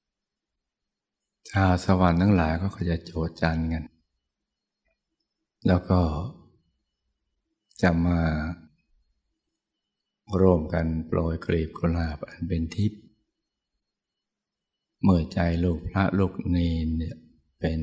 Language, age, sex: Thai, 60-79, male